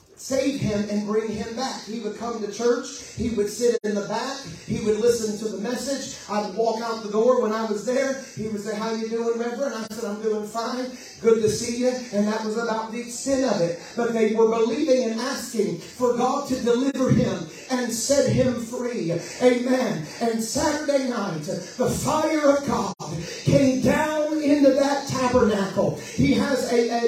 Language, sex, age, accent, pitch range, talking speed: English, male, 40-59, American, 220-275 Hz, 200 wpm